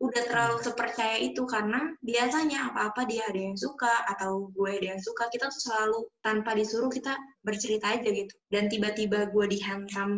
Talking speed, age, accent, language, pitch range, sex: 170 wpm, 20-39, native, Indonesian, 200-235 Hz, female